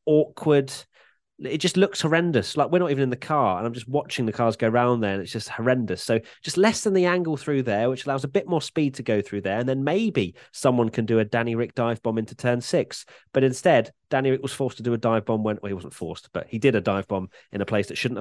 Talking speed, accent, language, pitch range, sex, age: 275 wpm, British, English, 105-150 Hz, male, 30-49